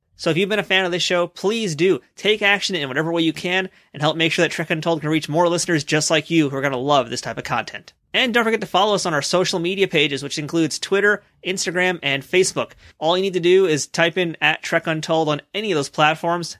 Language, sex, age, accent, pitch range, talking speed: English, male, 30-49, American, 150-185 Hz, 270 wpm